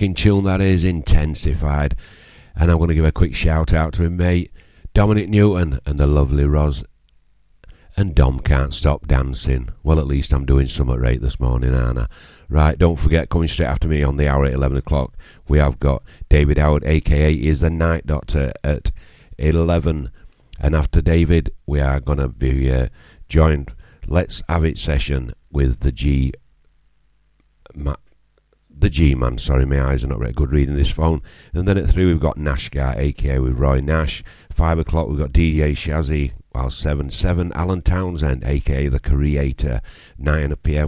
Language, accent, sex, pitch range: English, British, male, 70-85 Hz